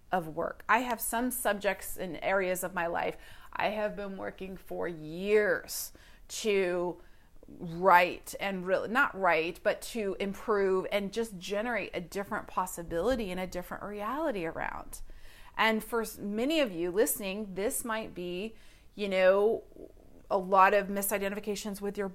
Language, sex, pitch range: English, female, 190-225 Hz